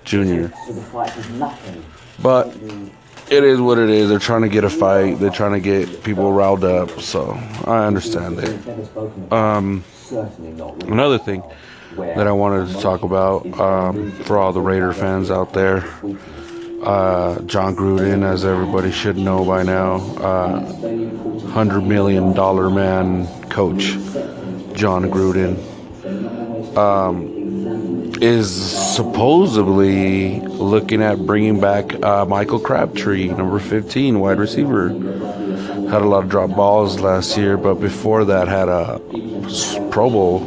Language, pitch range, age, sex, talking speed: English, 95-105 Hz, 30-49, male, 130 wpm